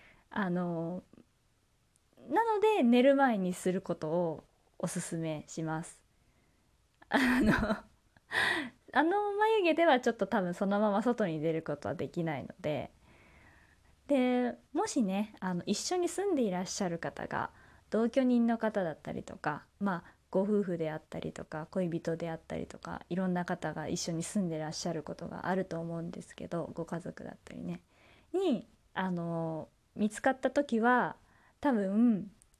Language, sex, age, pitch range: Japanese, female, 20-39, 170-240 Hz